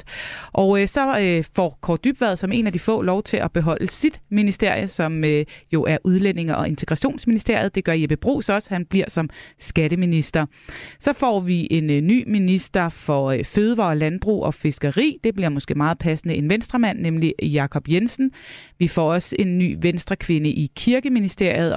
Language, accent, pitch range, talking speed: Danish, native, 165-215 Hz, 180 wpm